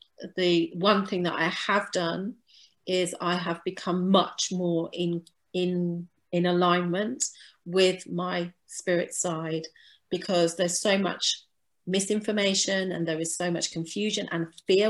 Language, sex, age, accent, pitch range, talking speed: English, female, 40-59, British, 175-215 Hz, 135 wpm